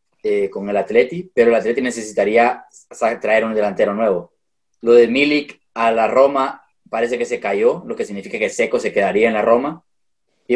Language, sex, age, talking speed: Spanish, male, 20-39, 190 wpm